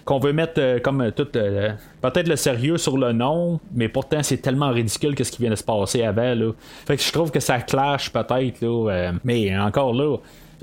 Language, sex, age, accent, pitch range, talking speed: French, male, 30-49, Canadian, 110-140 Hz, 225 wpm